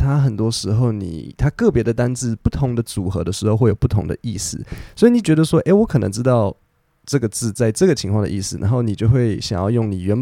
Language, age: Chinese, 20-39